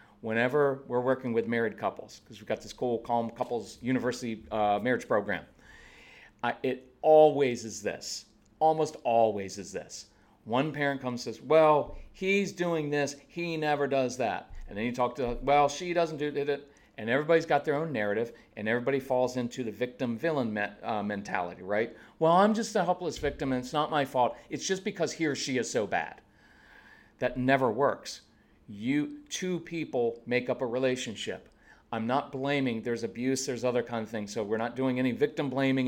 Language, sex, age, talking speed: English, male, 40-59, 185 wpm